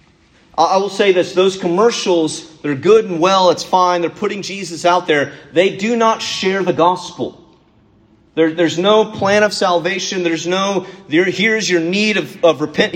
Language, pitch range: English, 160-210 Hz